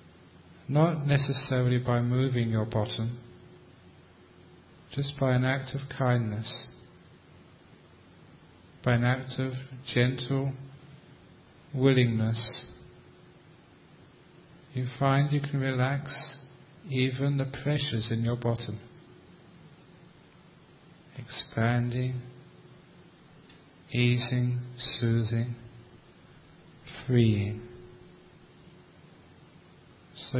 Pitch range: 120-140 Hz